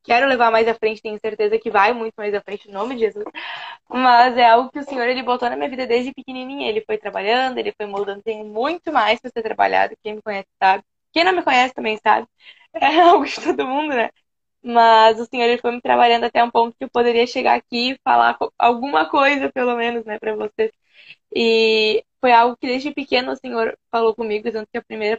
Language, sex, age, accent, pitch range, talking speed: Portuguese, female, 10-29, Brazilian, 215-255 Hz, 225 wpm